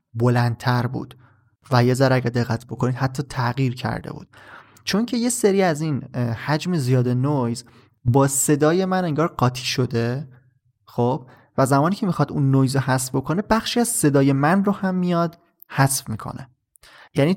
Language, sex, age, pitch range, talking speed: Persian, male, 20-39, 120-150 Hz, 160 wpm